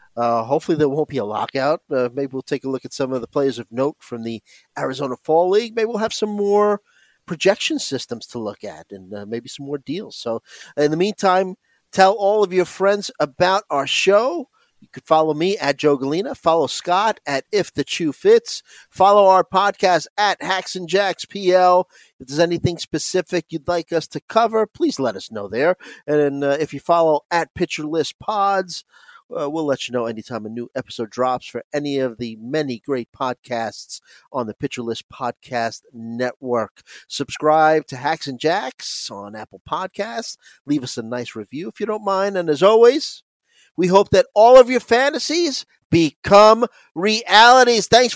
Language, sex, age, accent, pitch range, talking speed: English, male, 40-59, American, 130-205 Hz, 190 wpm